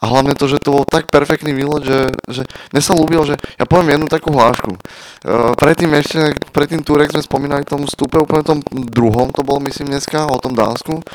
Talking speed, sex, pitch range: 210 wpm, male, 125-150 Hz